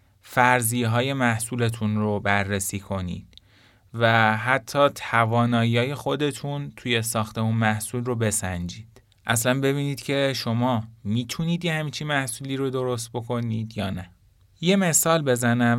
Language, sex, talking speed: Persian, male, 120 wpm